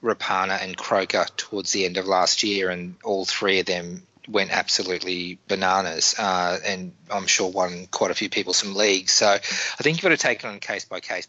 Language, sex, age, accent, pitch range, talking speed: English, male, 20-39, Australian, 90-105 Hz, 205 wpm